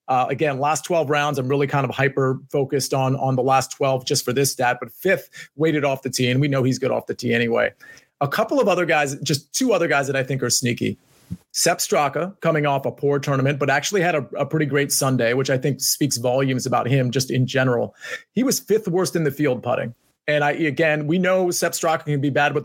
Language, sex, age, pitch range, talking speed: English, male, 30-49, 135-160 Hz, 245 wpm